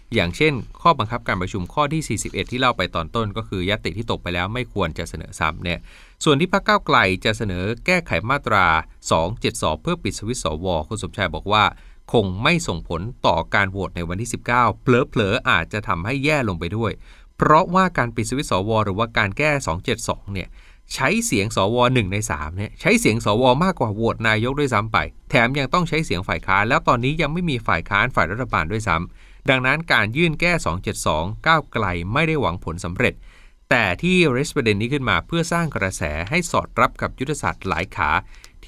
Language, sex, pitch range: Thai, male, 95-130 Hz